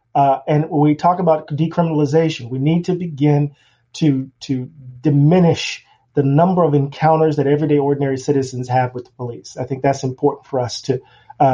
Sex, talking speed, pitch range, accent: male, 175 wpm, 140-175 Hz, American